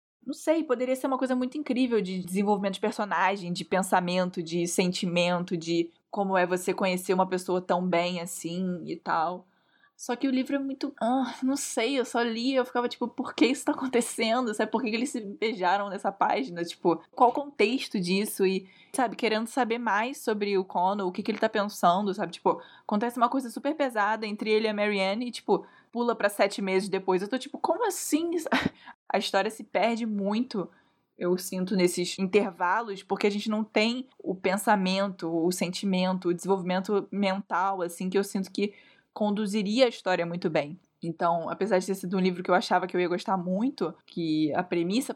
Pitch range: 185-235 Hz